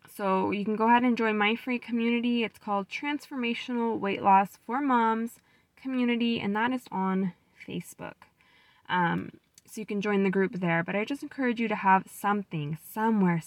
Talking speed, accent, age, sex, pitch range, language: 180 wpm, American, 10-29, female, 180-235 Hz, English